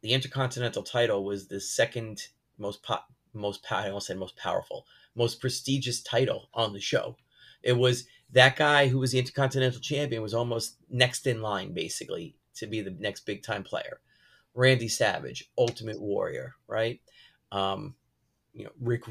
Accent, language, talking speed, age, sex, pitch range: American, English, 160 wpm, 30-49, male, 110-130 Hz